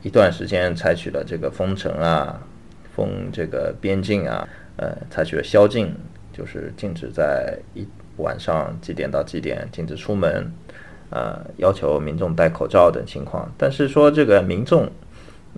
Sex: male